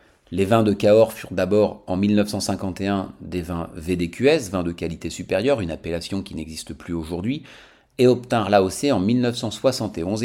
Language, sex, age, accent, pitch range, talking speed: French, male, 40-59, French, 90-120 Hz, 150 wpm